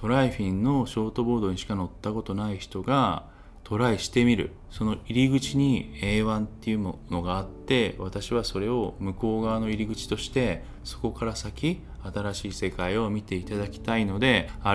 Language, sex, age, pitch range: Japanese, male, 20-39, 90-120 Hz